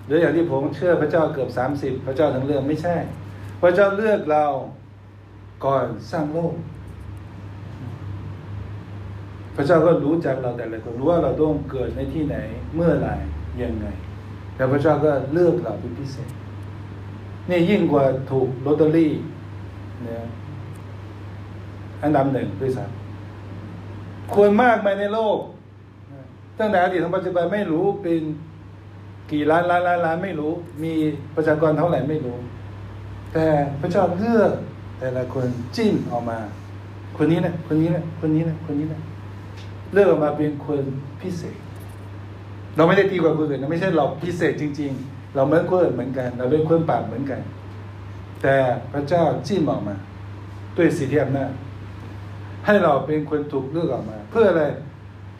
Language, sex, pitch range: Thai, male, 100-155 Hz